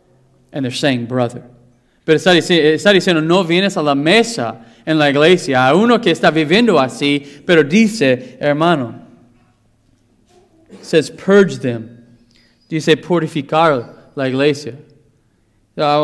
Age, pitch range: 20-39, 135-180 Hz